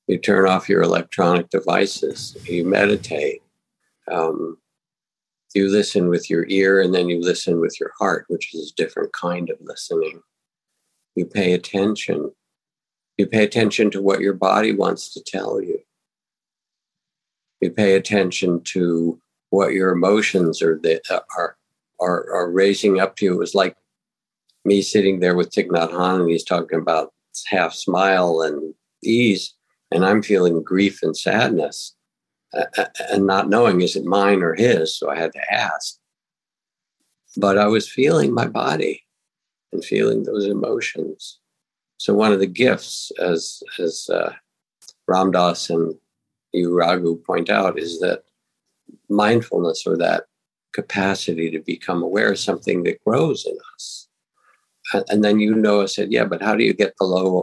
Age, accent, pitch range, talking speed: 60-79, American, 90-105 Hz, 155 wpm